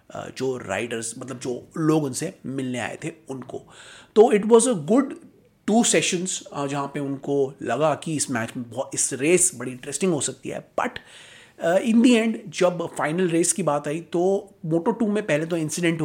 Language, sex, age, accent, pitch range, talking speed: Hindi, male, 30-49, native, 135-180 Hz, 185 wpm